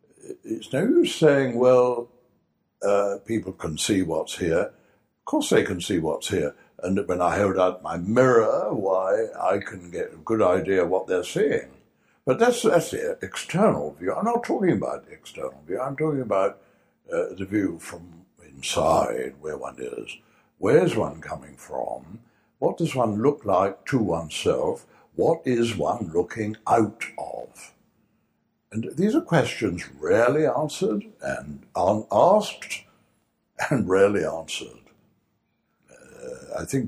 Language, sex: English, male